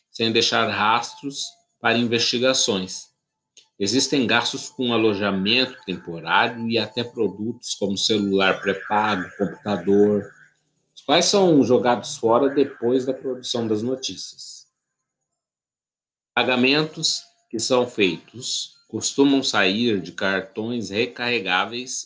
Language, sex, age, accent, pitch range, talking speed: Portuguese, male, 60-79, Brazilian, 100-135 Hz, 100 wpm